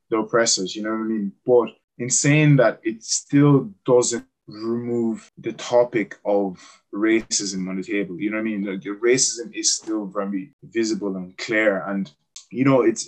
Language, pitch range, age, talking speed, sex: English, 100-130 Hz, 20-39, 185 wpm, male